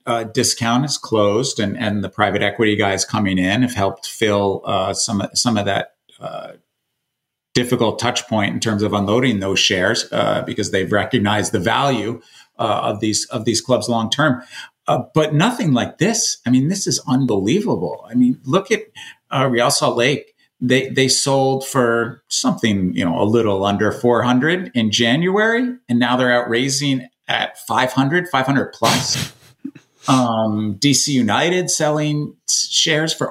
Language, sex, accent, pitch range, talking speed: English, male, American, 105-135 Hz, 160 wpm